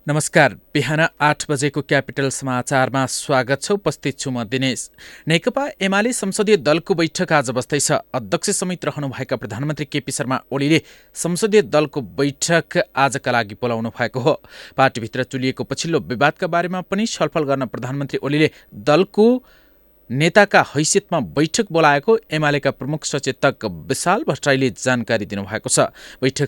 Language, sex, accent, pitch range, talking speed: English, male, Indian, 120-160 Hz, 155 wpm